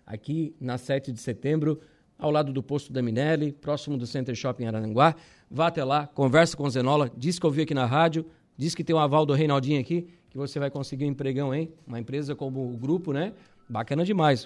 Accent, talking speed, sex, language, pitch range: Brazilian, 220 wpm, male, Portuguese, 135-170 Hz